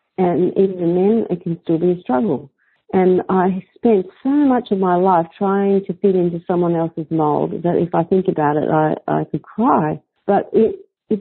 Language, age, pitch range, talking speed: English, 50-69, 160-190 Hz, 200 wpm